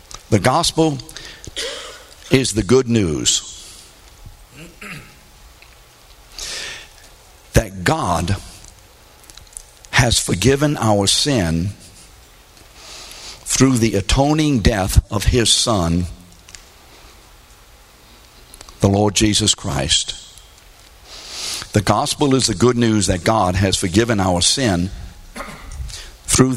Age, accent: 60-79, American